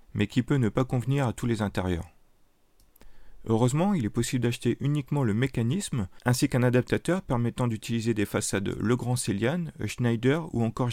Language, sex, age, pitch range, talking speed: French, male, 40-59, 110-130 Hz, 170 wpm